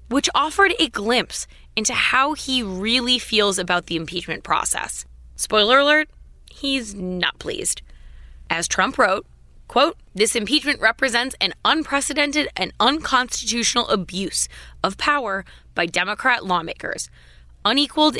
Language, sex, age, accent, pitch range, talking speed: English, female, 20-39, American, 175-250 Hz, 120 wpm